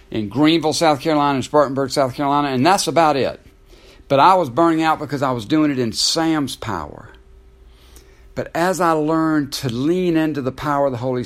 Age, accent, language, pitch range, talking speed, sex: 60-79, American, English, 125-165 Hz, 195 wpm, male